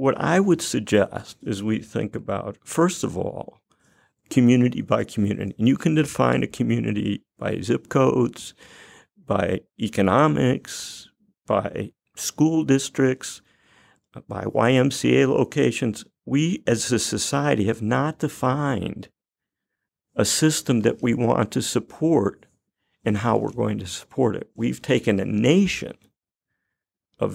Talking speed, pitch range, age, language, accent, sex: 125 wpm, 110-145 Hz, 50-69, English, American, male